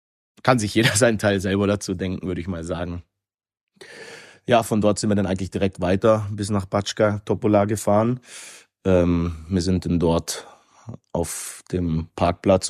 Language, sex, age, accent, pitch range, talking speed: German, male, 30-49, German, 90-100 Hz, 160 wpm